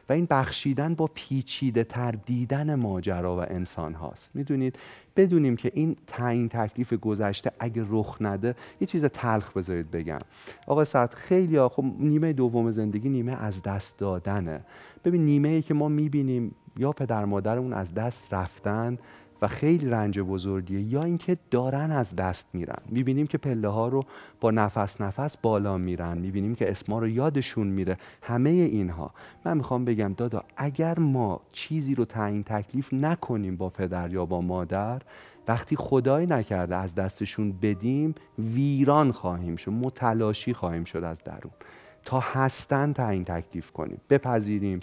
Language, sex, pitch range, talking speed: Persian, male, 100-135 Hz, 155 wpm